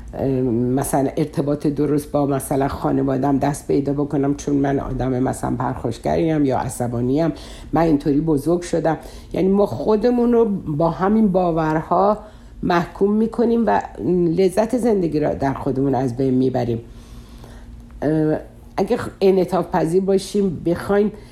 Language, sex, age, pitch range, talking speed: Persian, female, 60-79, 135-185 Hz, 120 wpm